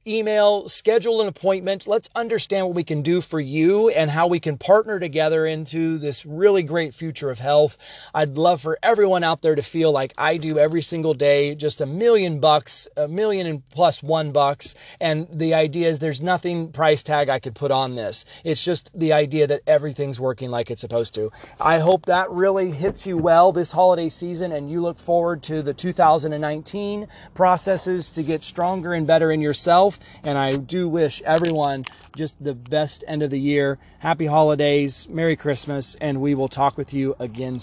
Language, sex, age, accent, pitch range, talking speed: English, male, 30-49, American, 145-190 Hz, 195 wpm